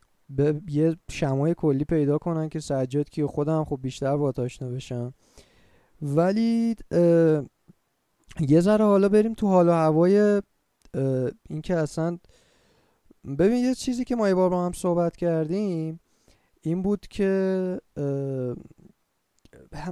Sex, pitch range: male, 135-175 Hz